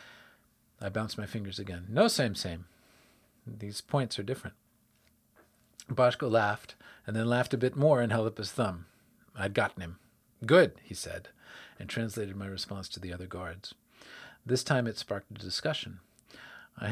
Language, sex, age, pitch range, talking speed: English, male, 40-59, 100-125 Hz, 165 wpm